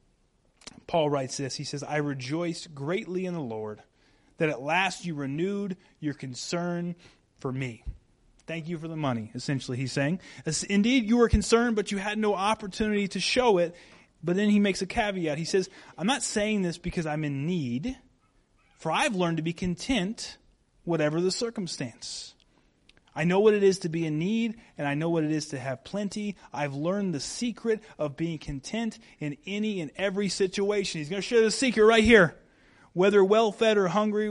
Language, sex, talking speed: English, male, 185 wpm